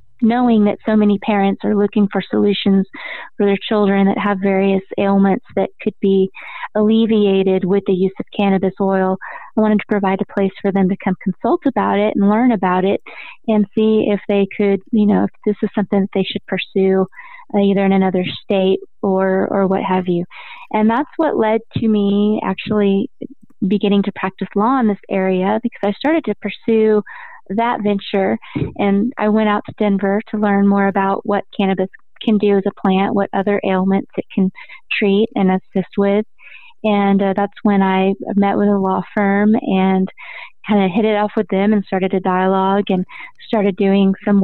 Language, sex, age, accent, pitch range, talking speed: English, female, 20-39, American, 190-210 Hz, 190 wpm